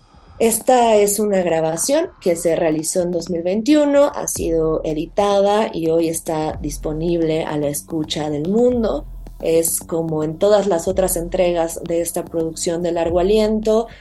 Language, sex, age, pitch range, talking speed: Spanish, female, 30-49, 165-200 Hz, 145 wpm